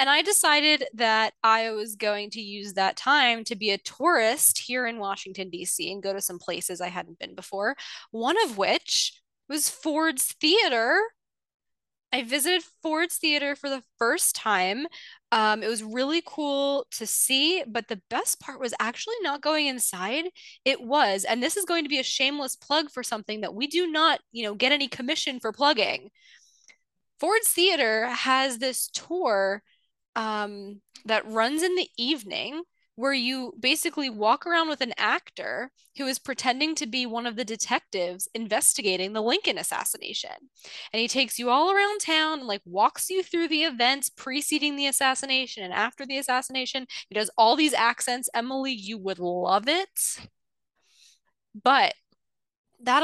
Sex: female